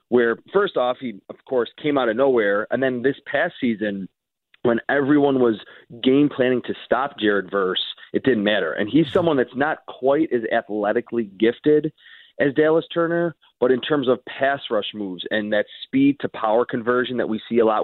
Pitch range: 110-135 Hz